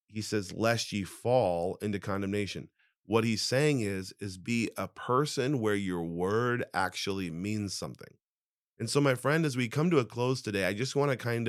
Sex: male